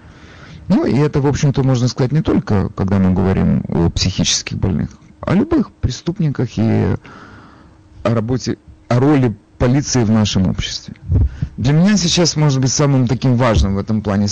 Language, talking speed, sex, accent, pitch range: Russian, 165 wpm, male, native, 95-130 Hz